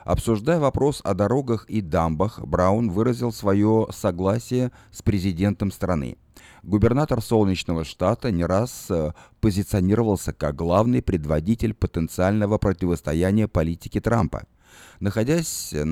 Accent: native